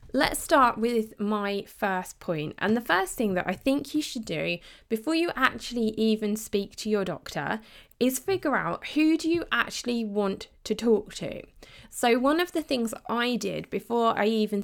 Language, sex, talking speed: English, female, 185 wpm